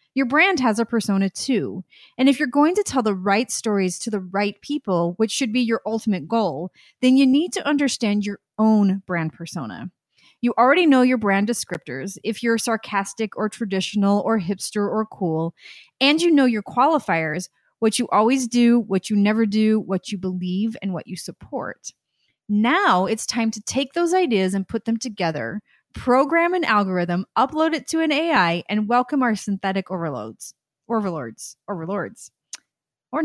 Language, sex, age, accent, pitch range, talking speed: English, female, 30-49, American, 190-260 Hz, 175 wpm